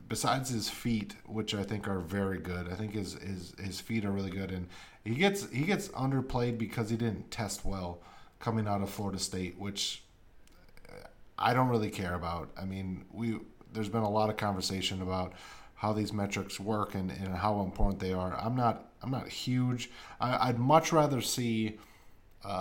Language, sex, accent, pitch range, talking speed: English, male, American, 95-115 Hz, 190 wpm